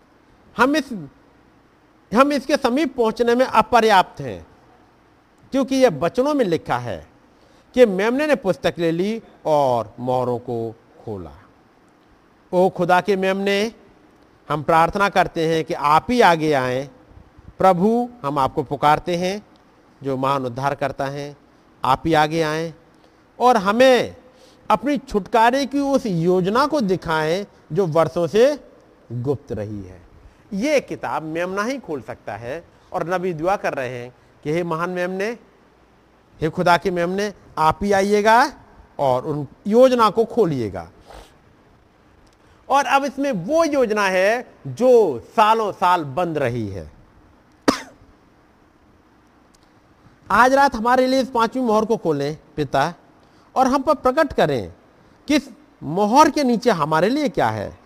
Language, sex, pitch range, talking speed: Hindi, male, 150-245 Hz, 135 wpm